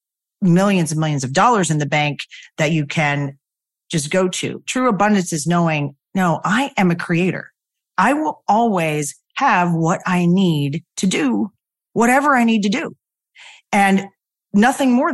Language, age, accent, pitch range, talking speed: English, 40-59, American, 160-205 Hz, 160 wpm